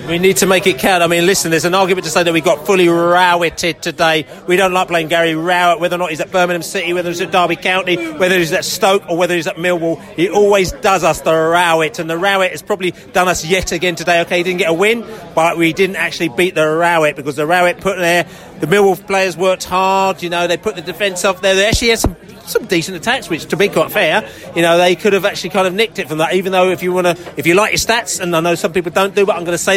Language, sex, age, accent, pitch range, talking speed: English, male, 30-49, British, 170-195 Hz, 285 wpm